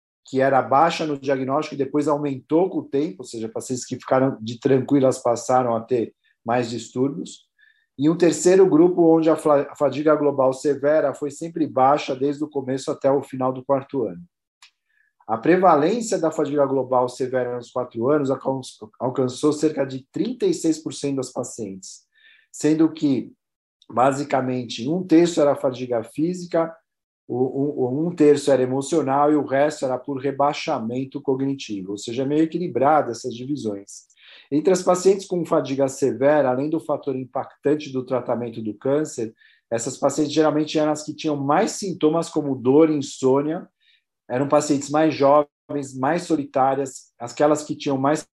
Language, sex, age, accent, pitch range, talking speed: Portuguese, male, 40-59, Brazilian, 130-155 Hz, 150 wpm